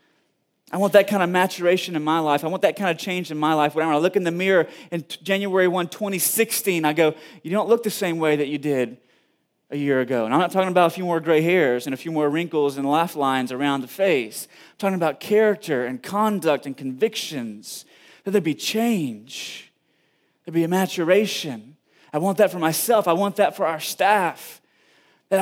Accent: American